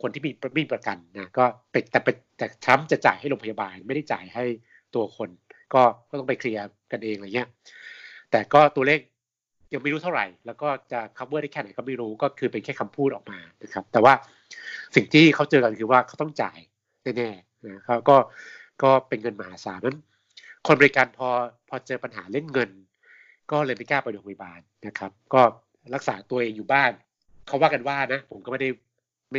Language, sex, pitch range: Thai, male, 105-135 Hz